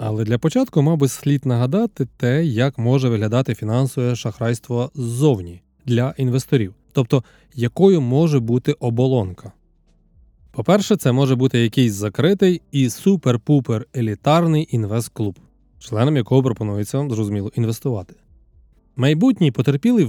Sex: male